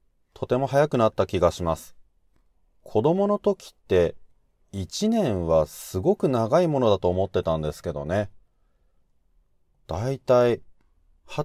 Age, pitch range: 30-49, 80-130 Hz